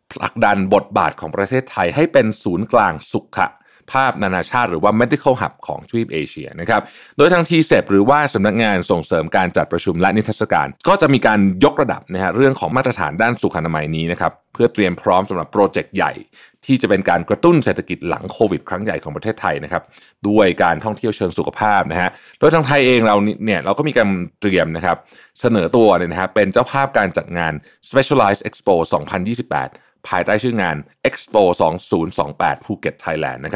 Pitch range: 90-115 Hz